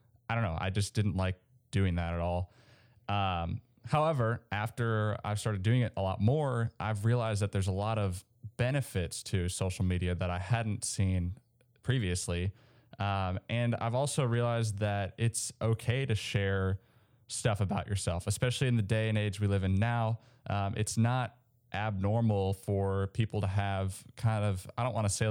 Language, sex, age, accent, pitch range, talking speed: English, male, 20-39, American, 95-115 Hz, 180 wpm